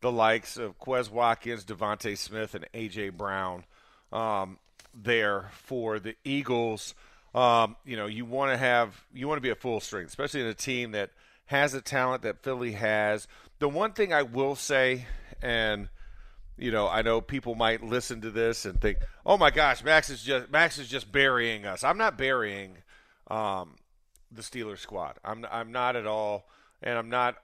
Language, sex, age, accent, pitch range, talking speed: English, male, 40-59, American, 105-130 Hz, 185 wpm